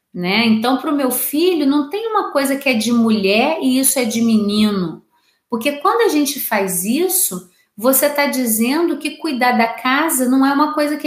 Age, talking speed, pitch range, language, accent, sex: 30-49, 200 wpm, 215-275 Hz, Portuguese, Brazilian, female